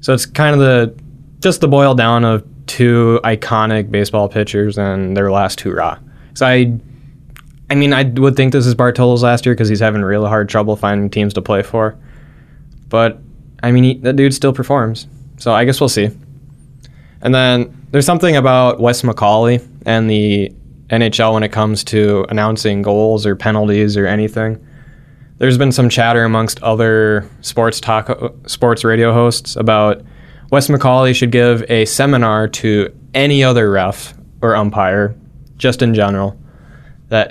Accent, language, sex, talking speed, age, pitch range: American, English, male, 165 wpm, 10-29, 110-135 Hz